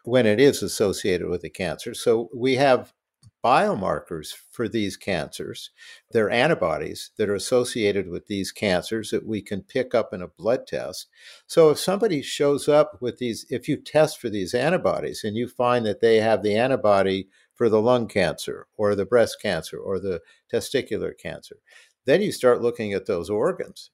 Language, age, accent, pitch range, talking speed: English, 50-69, American, 110-160 Hz, 180 wpm